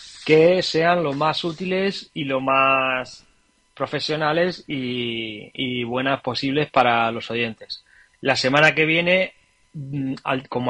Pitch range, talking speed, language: 120-150 Hz, 120 wpm, Spanish